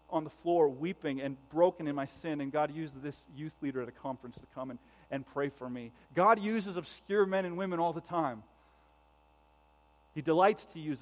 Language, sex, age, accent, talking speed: English, male, 40-59, American, 205 wpm